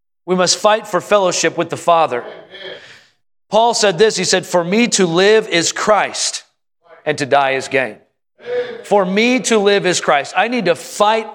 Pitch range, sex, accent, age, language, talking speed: 155-200 Hz, male, American, 40-59, English, 180 wpm